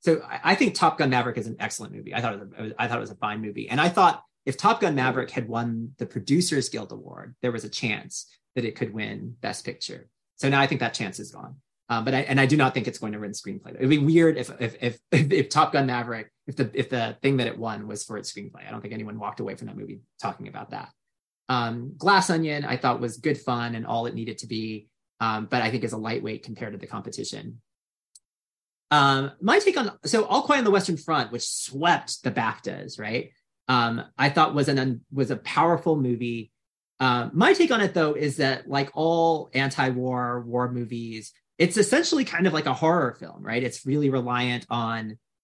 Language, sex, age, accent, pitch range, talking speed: English, male, 30-49, American, 115-150 Hz, 230 wpm